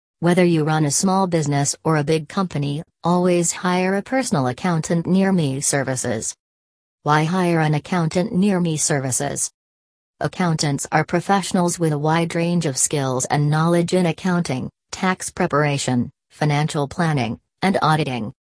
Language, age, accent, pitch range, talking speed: English, 40-59, American, 145-180 Hz, 140 wpm